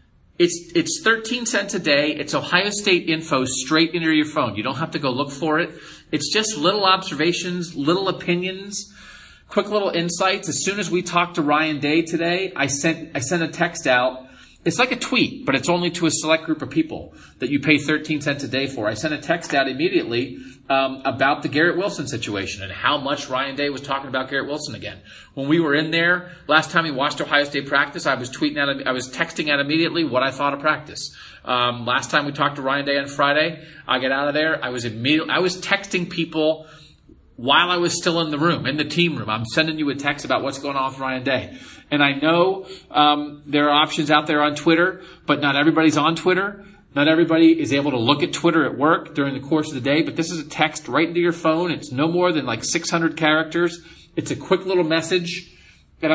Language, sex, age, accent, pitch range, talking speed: English, male, 30-49, American, 140-175 Hz, 235 wpm